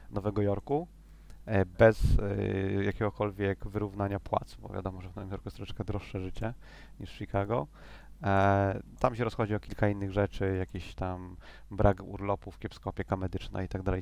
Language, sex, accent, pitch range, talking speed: Polish, male, native, 95-105 Hz, 165 wpm